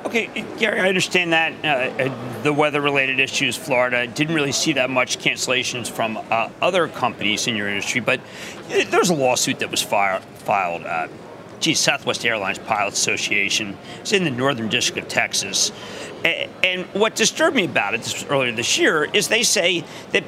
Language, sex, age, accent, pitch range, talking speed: English, male, 40-59, American, 140-200 Hz, 175 wpm